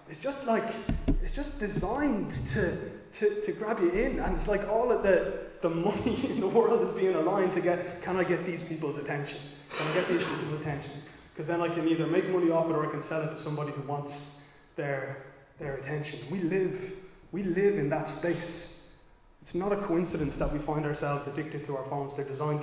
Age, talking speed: 20-39, 215 wpm